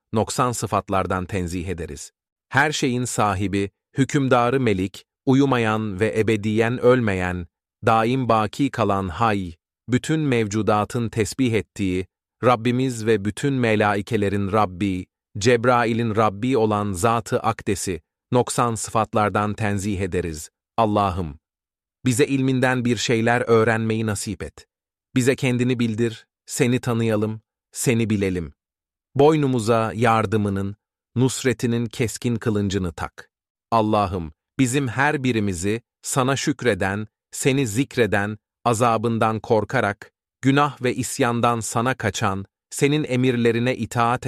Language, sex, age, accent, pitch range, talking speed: Turkish, male, 40-59, native, 100-125 Hz, 100 wpm